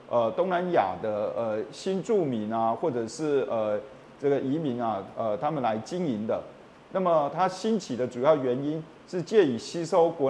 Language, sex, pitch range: Chinese, male, 125-185 Hz